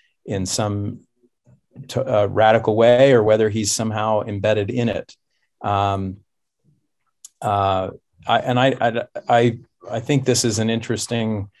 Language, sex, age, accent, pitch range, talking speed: English, male, 40-59, American, 100-120 Hz, 125 wpm